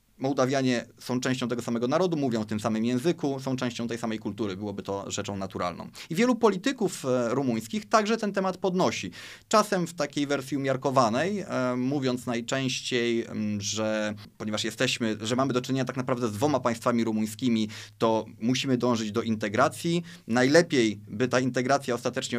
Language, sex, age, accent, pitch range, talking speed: Polish, male, 30-49, native, 115-155 Hz, 155 wpm